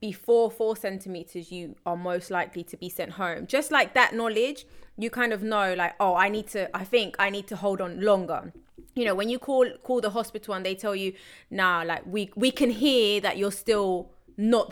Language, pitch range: English, 185-235 Hz